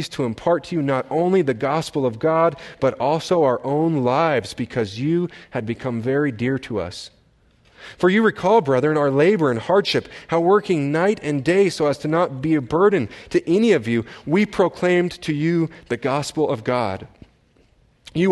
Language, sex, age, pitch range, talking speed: English, male, 30-49, 125-170 Hz, 185 wpm